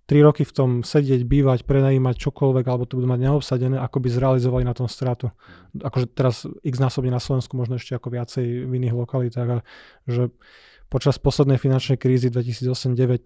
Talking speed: 170 wpm